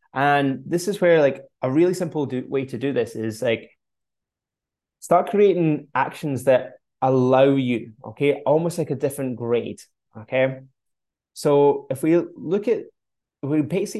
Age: 20-39